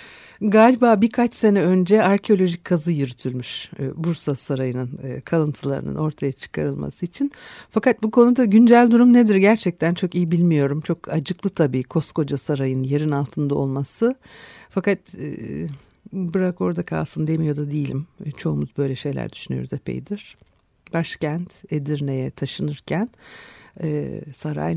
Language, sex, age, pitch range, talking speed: Turkish, female, 60-79, 140-180 Hz, 110 wpm